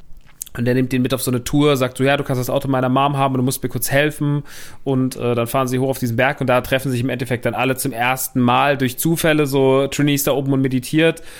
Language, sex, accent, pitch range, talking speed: German, male, German, 125-145 Hz, 285 wpm